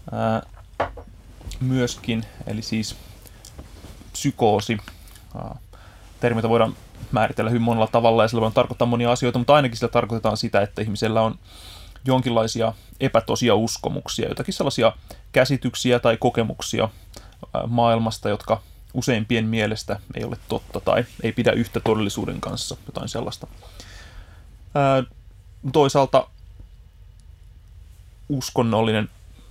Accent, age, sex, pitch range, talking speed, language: native, 20-39, male, 95-125 Hz, 100 wpm, Finnish